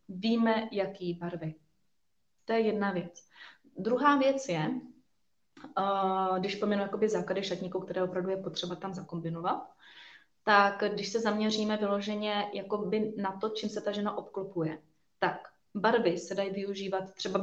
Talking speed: 135 wpm